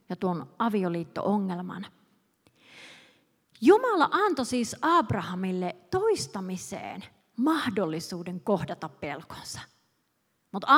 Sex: female